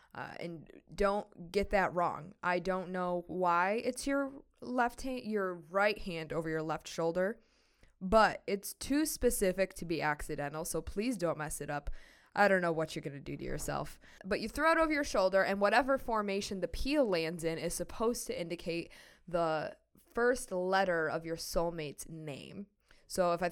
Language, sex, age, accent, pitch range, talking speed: English, female, 20-39, American, 165-225 Hz, 185 wpm